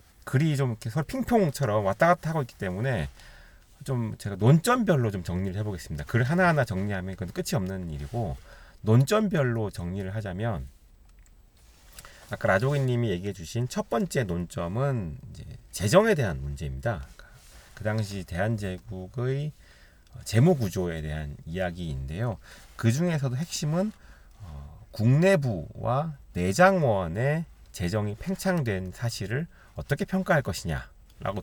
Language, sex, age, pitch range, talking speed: English, male, 40-59, 95-145 Hz, 110 wpm